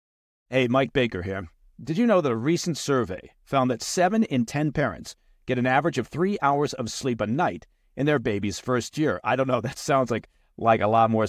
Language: English